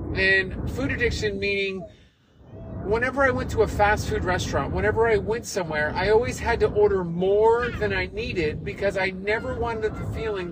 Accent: American